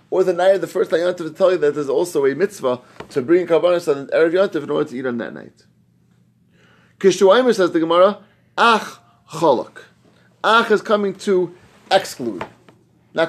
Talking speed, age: 190 wpm, 30-49